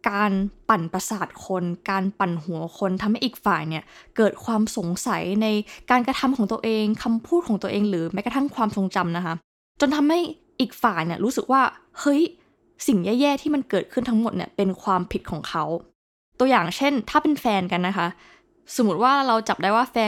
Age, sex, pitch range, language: 20-39, female, 190-260 Hz, Thai